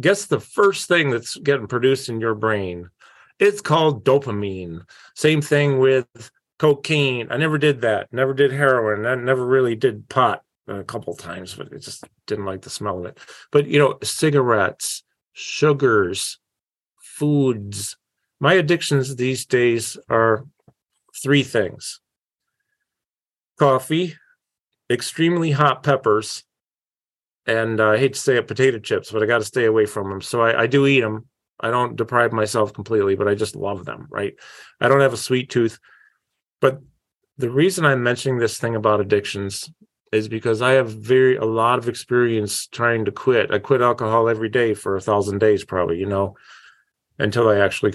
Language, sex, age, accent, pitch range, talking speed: English, male, 40-59, American, 110-140 Hz, 170 wpm